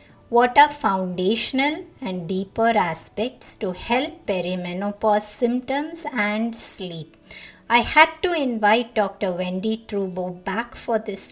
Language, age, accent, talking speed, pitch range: English, 50-69, Indian, 115 wpm, 190-250 Hz